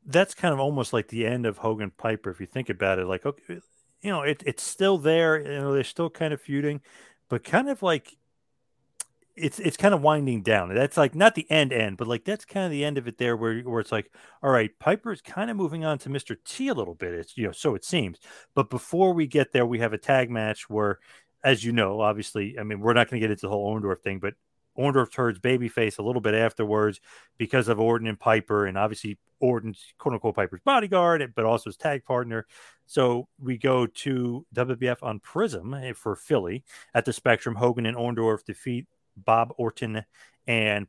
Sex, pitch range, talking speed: male, 110-140 Hz, 220 wpm